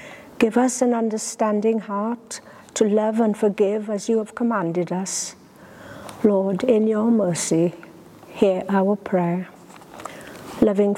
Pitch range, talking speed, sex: 200-240 Hz, 120 wpm, female